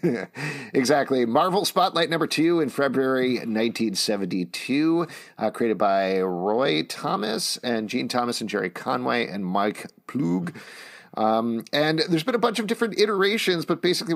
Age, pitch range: 40-59, 95-125 Hz